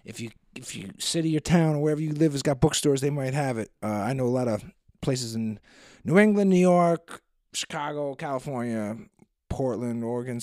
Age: 30-49